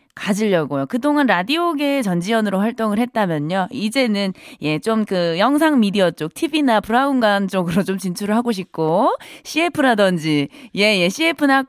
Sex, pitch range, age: female, 180-260 Hz, 20-39